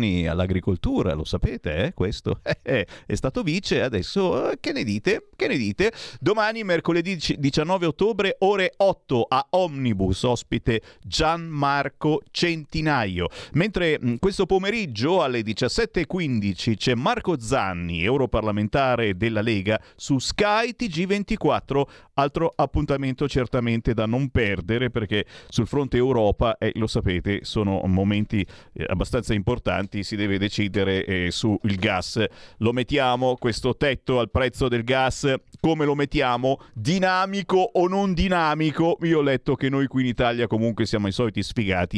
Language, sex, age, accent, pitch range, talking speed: Italian, male, 40-59, native, 110-175 Hz, 130 wpm